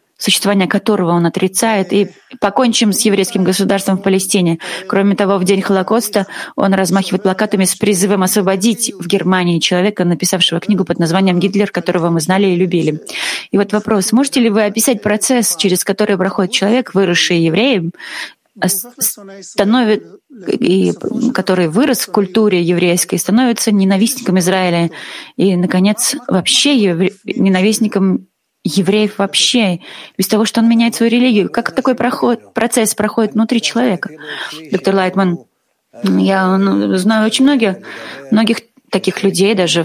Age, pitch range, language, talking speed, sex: 30-49, 180-215 Hz, Russian, 130 wpm, female